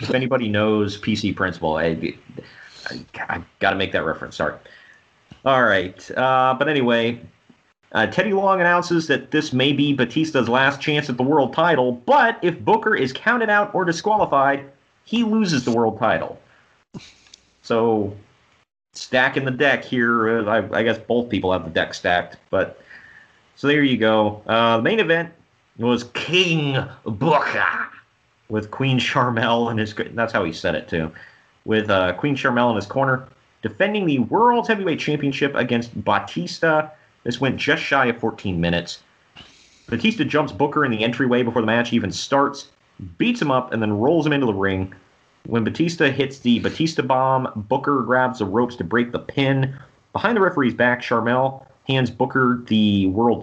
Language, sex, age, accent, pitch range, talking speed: English, male, 30-49, American, 115-145 Hz, 170 wpm